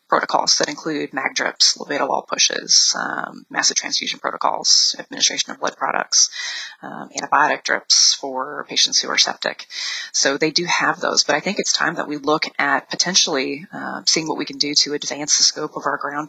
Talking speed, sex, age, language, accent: 190 wpm, female, 30-49, English, American